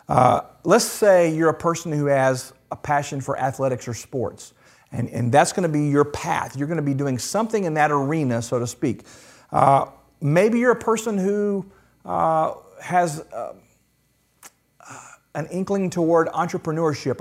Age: 40-59